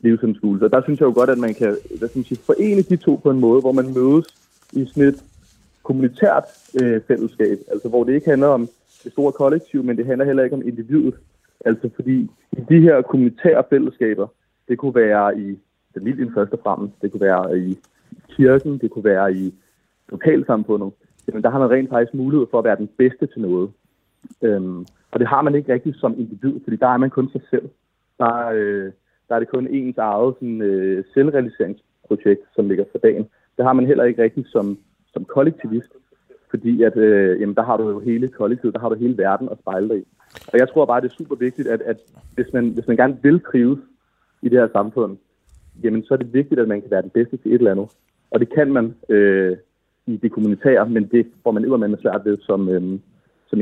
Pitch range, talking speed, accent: 105-130 Hz, 220 wpm, native